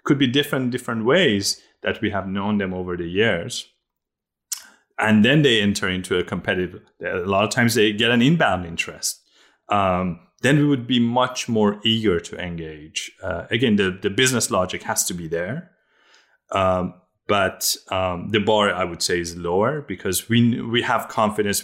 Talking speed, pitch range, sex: 175 wpm, 90-115 Hz, male